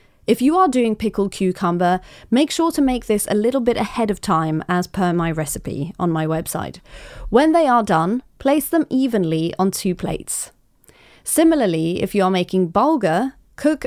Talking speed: 175 wpm